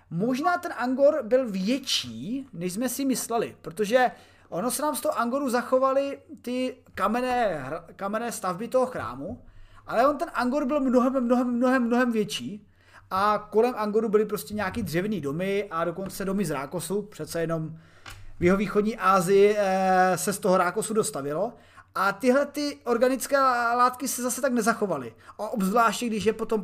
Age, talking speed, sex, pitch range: 30-49, 160 wpm, male, 195-255 Hz